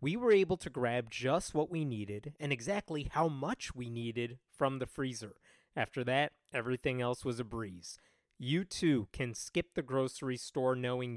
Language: English